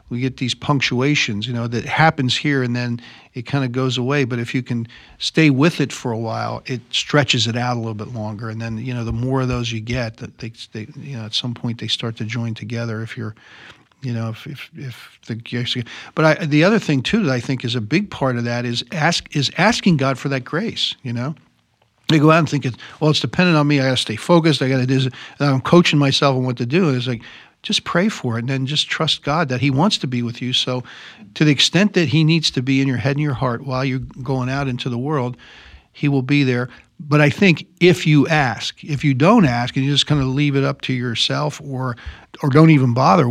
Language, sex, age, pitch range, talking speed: English, male, 50-69, 120-145 Hz, 260 wpm